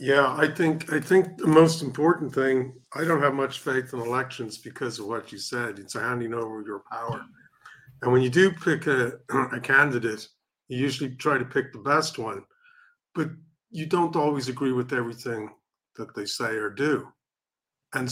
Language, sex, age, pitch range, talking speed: English, male, 50-69, 120-150 Hz, 180 wpm